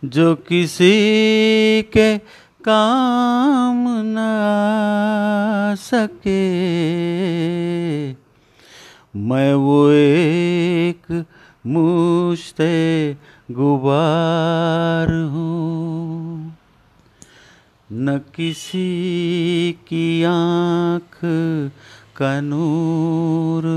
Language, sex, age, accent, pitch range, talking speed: Hindi, male, 40-59, native, 160-210 Hz, 45 wpm